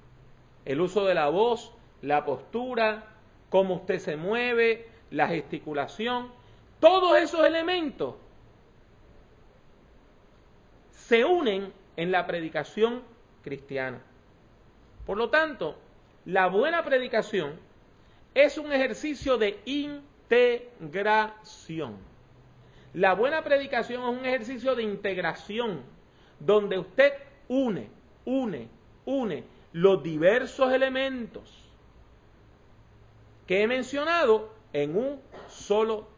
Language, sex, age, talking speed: English, male, 40-59, 90 wpm